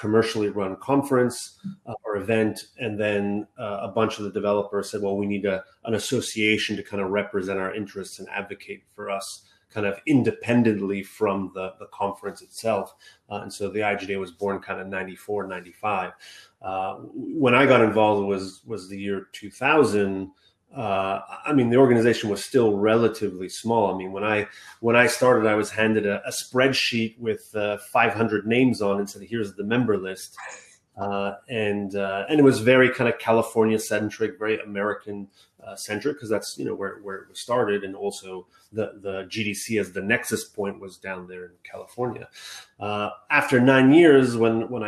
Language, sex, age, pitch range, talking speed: Romanian, male, 30-49, 100-115 Hz, 185 wpm